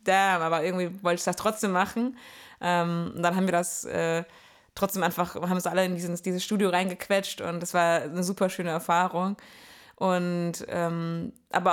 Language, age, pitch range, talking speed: German, 20-39, 175-220 Hz, 180 wpm